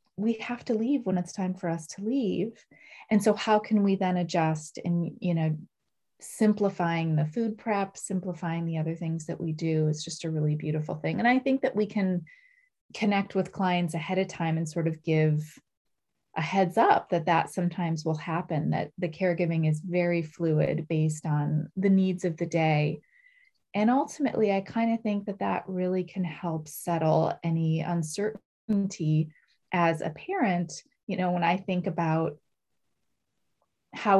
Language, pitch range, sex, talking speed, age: English, 165-200 Hz, female, 175 wpm, 30-49